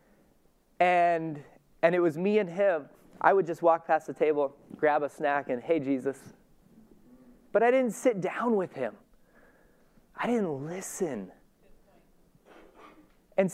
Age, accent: 30-49, American